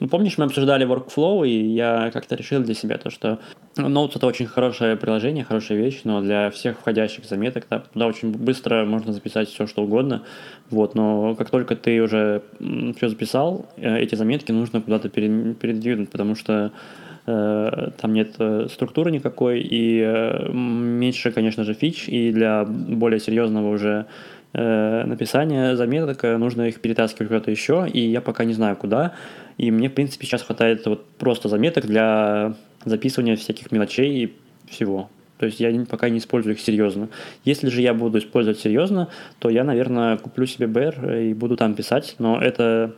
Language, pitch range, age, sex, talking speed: Russian, 110-120 Hz, 20-39, male, 170 wpm